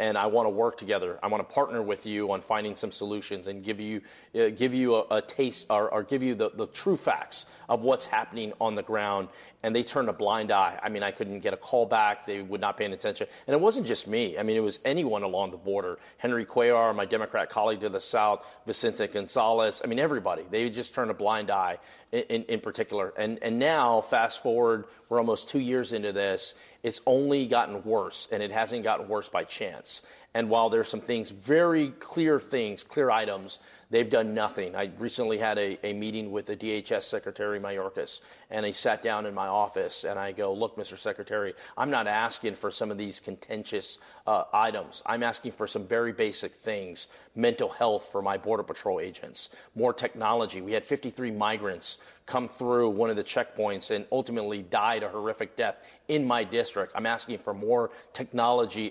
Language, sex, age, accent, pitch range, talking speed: English, male, 40-59, American, 105-140 Hz, 205 wpm